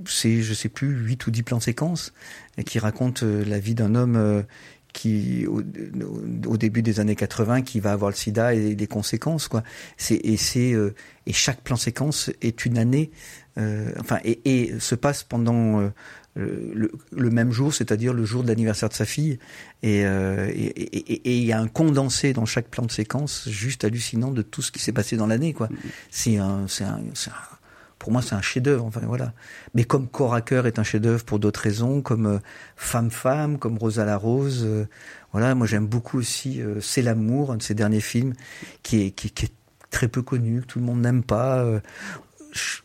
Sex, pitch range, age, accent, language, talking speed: male, 110-130 Hz, 50-69, French, French, 210 wpm